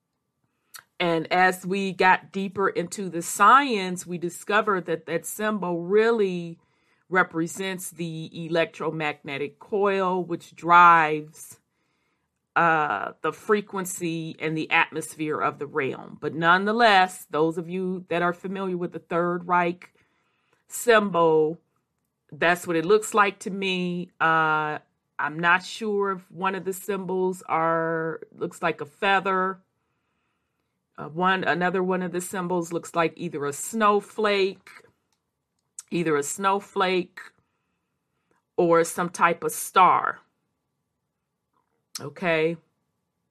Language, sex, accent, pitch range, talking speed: English, female, American, 165-195 Hz, 115 wpm